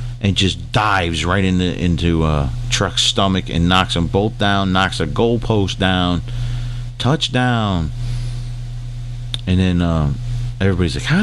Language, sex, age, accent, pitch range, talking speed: English, male, 40-59, American, 100-120 Hz, 140 wpm